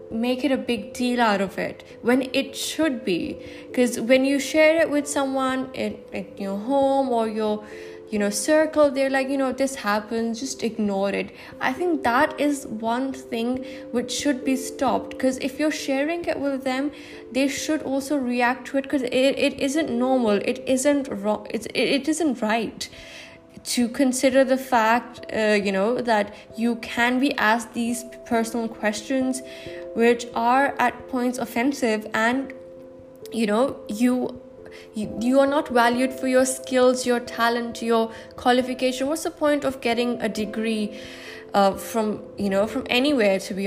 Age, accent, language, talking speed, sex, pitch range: 10-29, Indian, English, 170 wpm, female, 225-270 Hz